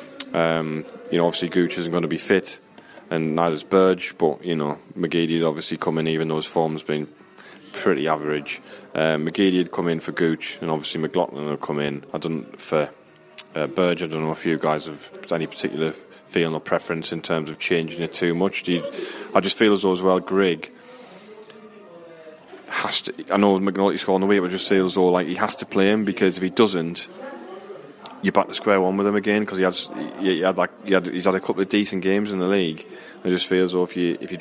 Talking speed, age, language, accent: 235 wpm, 20-39, English, British